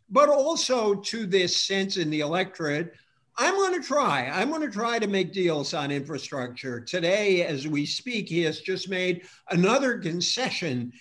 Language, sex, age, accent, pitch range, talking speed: English, male, 50-69, American, 150-205 Hz, 160 wpm